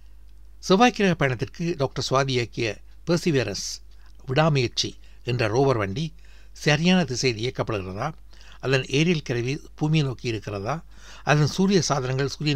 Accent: native